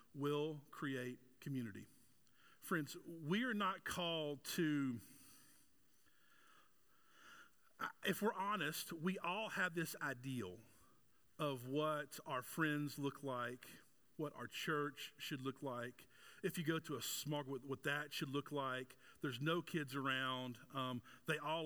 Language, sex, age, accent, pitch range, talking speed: English, male, 40-59, American, 140-195 Hz, 130 wpm